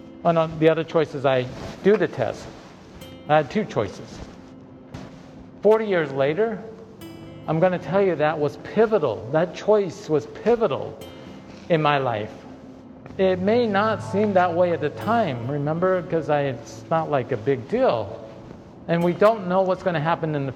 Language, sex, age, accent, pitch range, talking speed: English, male, 50-69, American, 140-185 Hz, 165 wpm